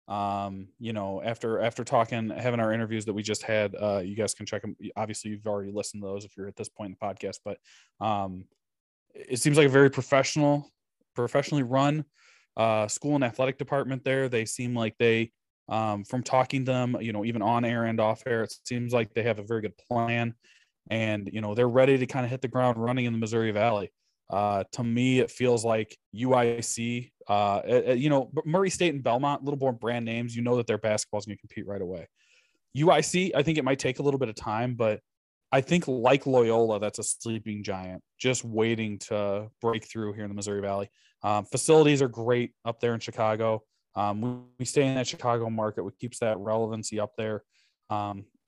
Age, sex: 20-39, male